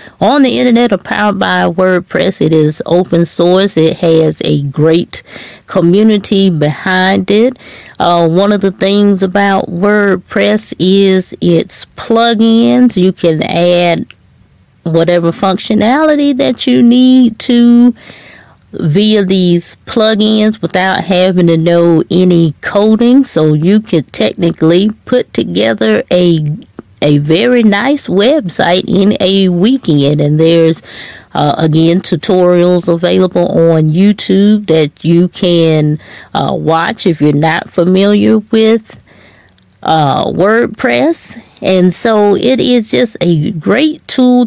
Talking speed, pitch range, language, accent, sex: 120 wpm, 165-210 Hz, English, American, female